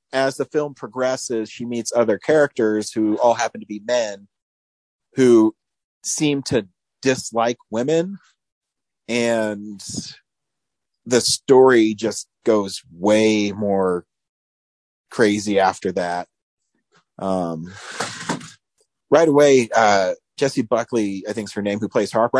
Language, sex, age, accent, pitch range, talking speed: English, male, 40-59, American, 105-130 Hz, 115 wpm